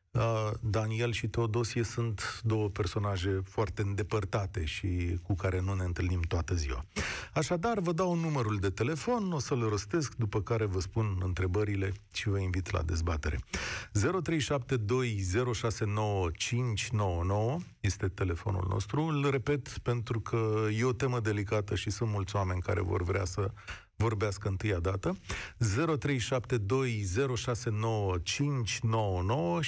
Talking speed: 120 wpm